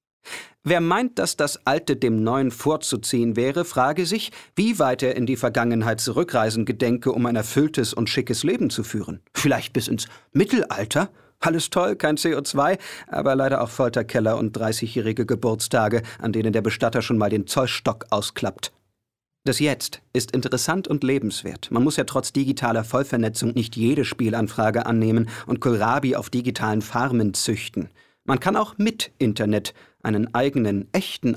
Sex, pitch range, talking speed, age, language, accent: male, 110-140 Hz, 155 wpm, 50-69, German, German